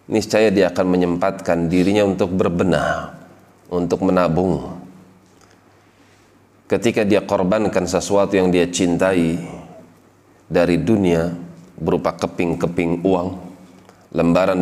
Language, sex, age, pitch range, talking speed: Indonesian, male, 30-49, 85-100 Hz, 90 wpm